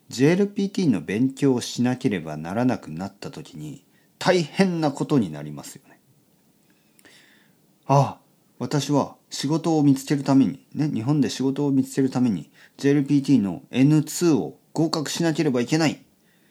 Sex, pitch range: male, 100-150 Hz